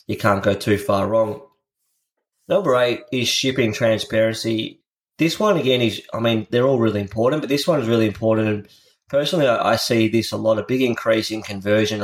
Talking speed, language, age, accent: 190 wpm, English, 20-39, Australian